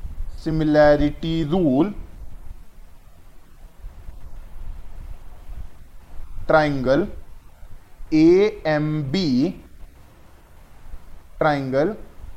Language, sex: Hindi, male